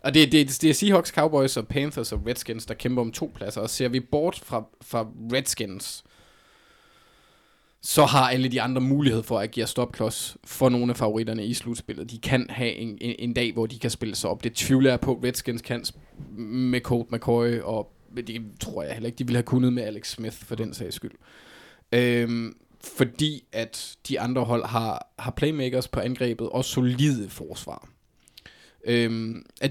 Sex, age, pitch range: male, 20-39, 115-130 Hz